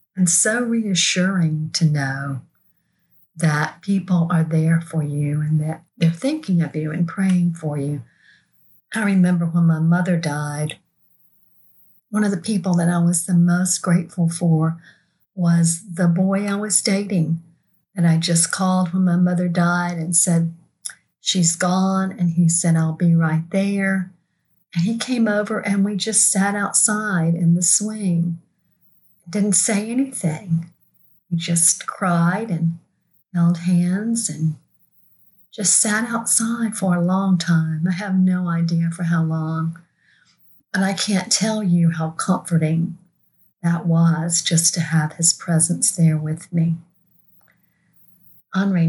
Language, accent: English, American